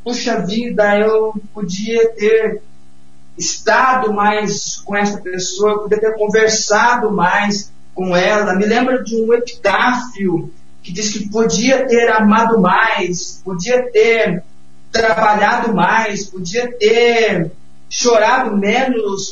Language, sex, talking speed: Portuguese, male, 110 wpm